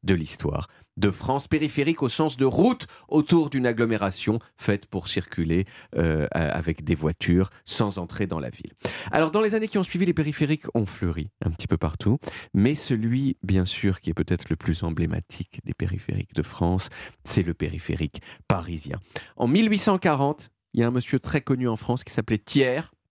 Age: 40-59